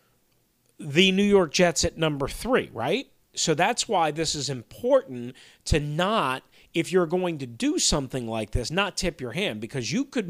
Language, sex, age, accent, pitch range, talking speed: English, male, 40-59, American, 130-180 Hz, 180 wpm